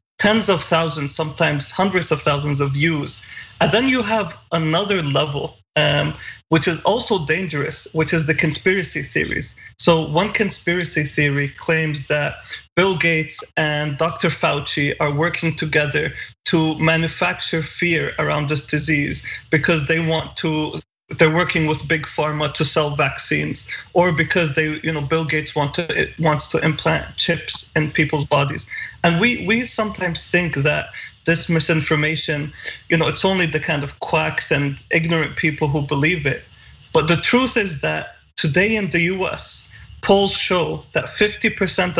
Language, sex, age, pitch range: English, male, 30-49, 150-175 Hz